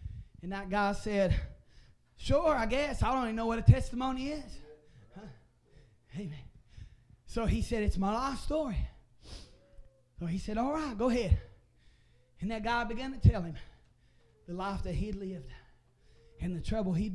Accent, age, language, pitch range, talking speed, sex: American, 20-39, English, 140-235 Hz, 160 wpm, male